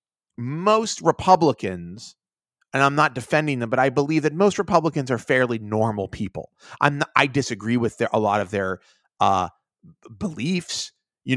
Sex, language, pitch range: male, English, 105-140 Hz